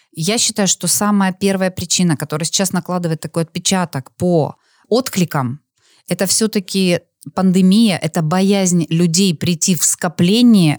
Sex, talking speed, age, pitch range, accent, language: female, 120 wpm, 20-39, 160-195 Hz, native, Russian